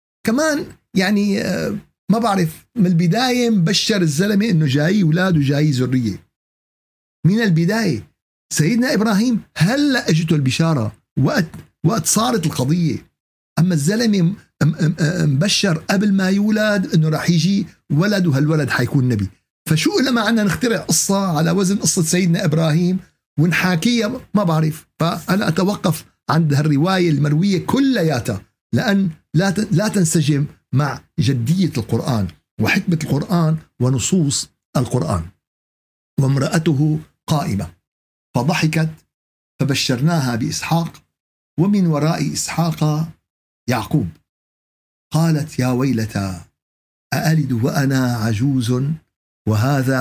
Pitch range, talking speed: 135-185 Hz, 100 wpm